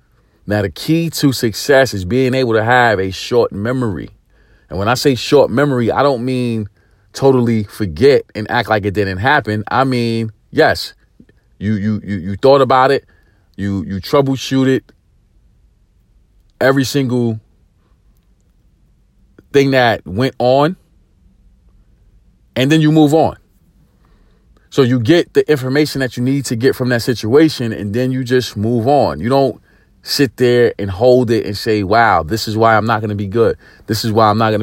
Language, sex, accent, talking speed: English, male, American, 170 wpm